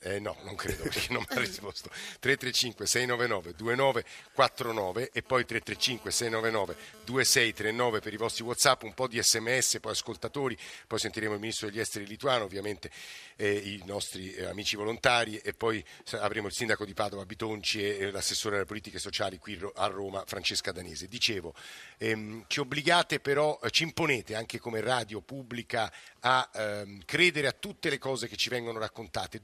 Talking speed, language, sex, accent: 160 wpm, Italian, male, native